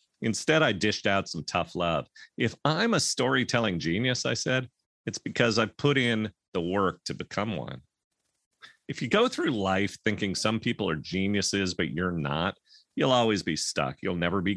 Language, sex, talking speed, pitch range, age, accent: English, male, 180 wpm, 95-130 Hz, 40-59, American